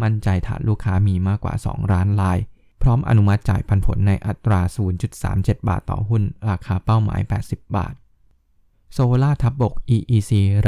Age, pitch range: 20-39, 95-110 Hz